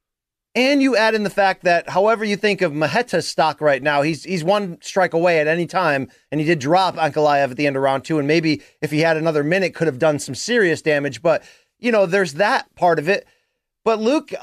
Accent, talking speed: American, 235 wpm